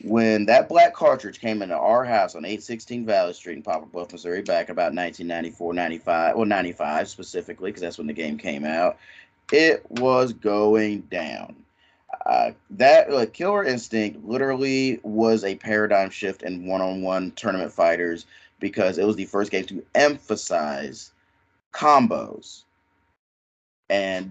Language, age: English, 30-49